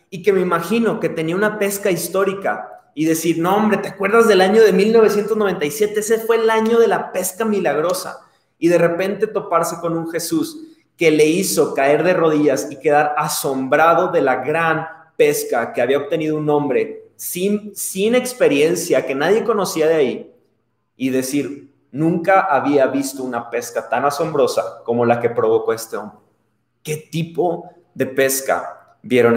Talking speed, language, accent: 165 wpm, Spanish, Mexican